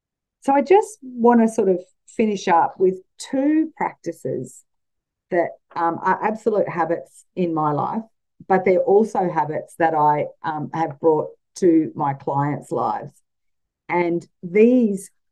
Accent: Australian